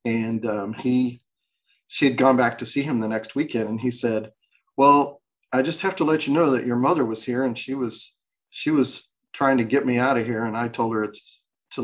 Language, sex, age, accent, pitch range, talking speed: English, male, 40-59, American, 115-140 Hz, 240 wpm